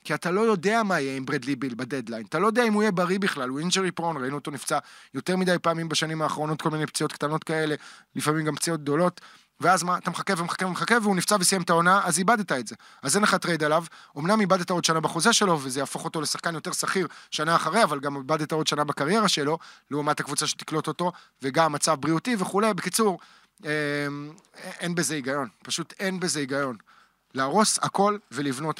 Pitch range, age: 145-180 Hz, 20-39